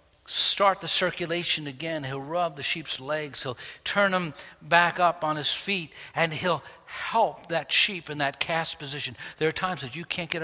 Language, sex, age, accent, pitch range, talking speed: English, male, 60-79, American, 140-195 Hz, 190 wpm